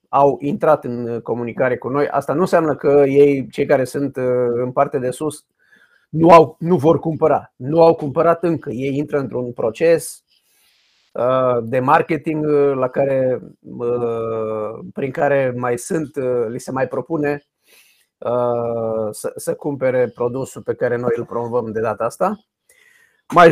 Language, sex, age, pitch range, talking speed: Romanian, male, 30-49, 130-165 Hz, 140 wpm